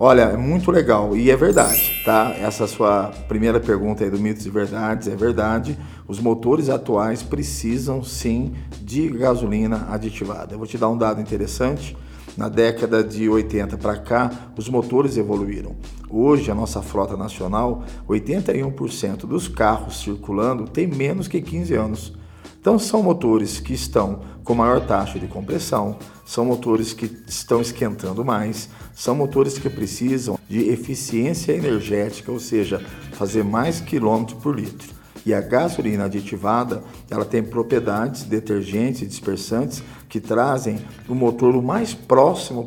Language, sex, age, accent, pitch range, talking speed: Portuguese, male, 40-59, Brazilian, 105-120 Hz, 145 wpm